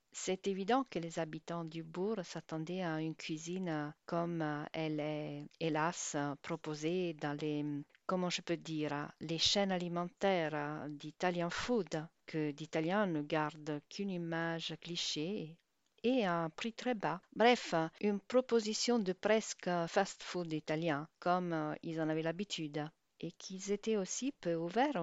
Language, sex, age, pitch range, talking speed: French, female, 50-69, 155-190 Hz, 135 wpm